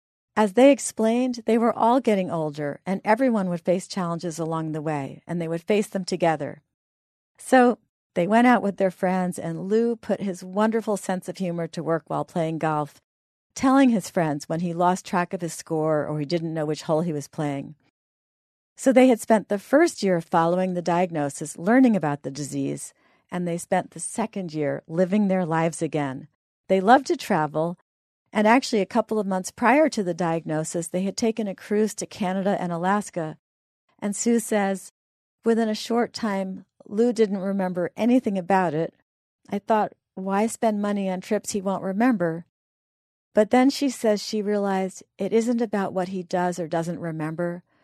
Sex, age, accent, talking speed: female, 40-59, American, 185 wpm